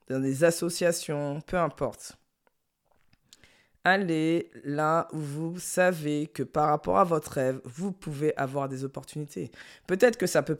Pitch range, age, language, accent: 130-165 Hz, 20-39, French, French